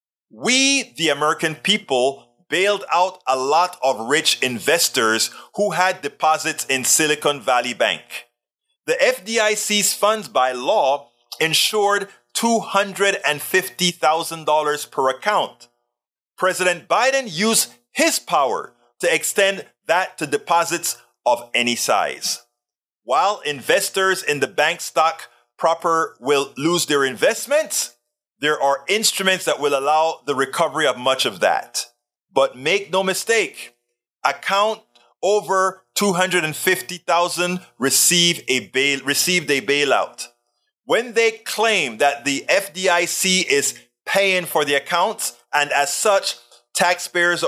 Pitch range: 135-195 Hz